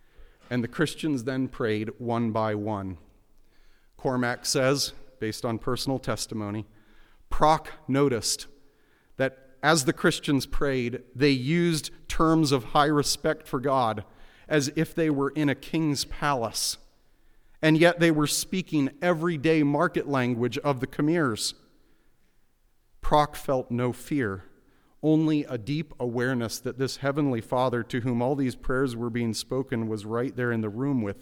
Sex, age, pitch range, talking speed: male, 40-59, 110-140 Hz, 145 wpm